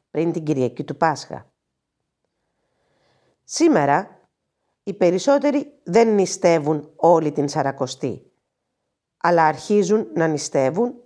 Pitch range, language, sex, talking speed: 150-225 Hz, Greek, female, 90 wpm